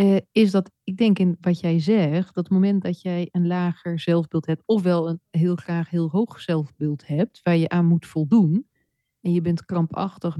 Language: Dutch